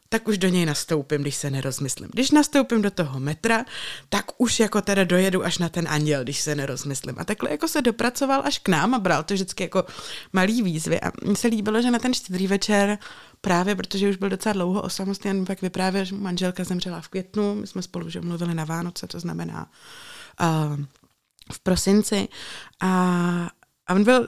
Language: Czech